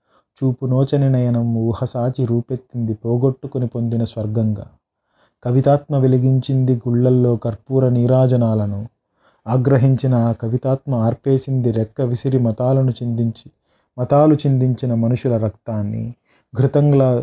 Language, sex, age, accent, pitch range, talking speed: Telugu, male, 30-49, native, 115-130 Hz, 90 wpm